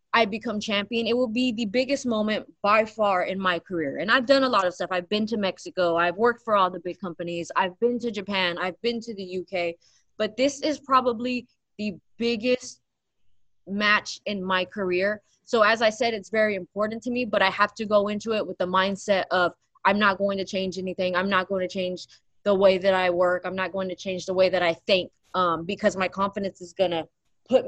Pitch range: 185-240 Hz